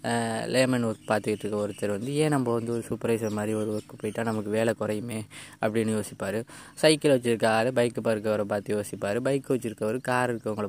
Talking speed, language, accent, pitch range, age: 175 wpm, Tamil, native, 105-125 Hz, 20-39